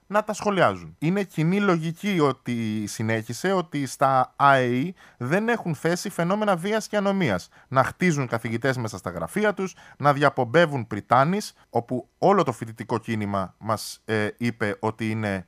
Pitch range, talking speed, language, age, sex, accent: 120-180 Hz, 145 wpm, Greek, 20-39, male, native